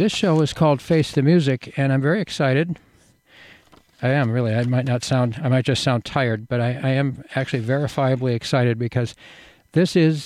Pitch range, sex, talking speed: 120-145 Hz, male, 195 wpm